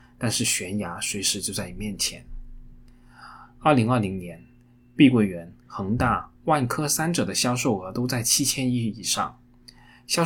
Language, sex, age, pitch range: Chinese, male, 20-39, 105-125 Hz